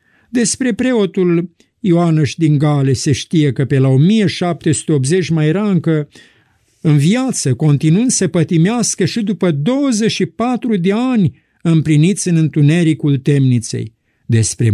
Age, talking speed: 50-69, 115 wpm